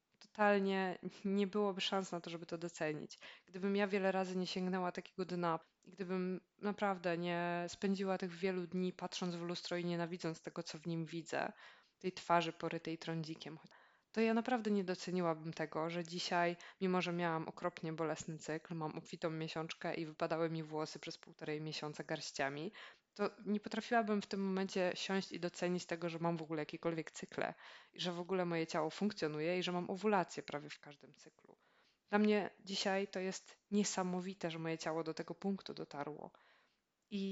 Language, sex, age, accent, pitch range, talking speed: Polish, female, 20-39, native, 165-195 Hz, 175 wpm